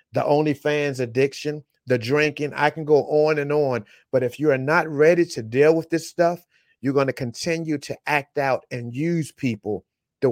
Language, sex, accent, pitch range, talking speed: English, male, American, 125-160 Hz, 190 wpm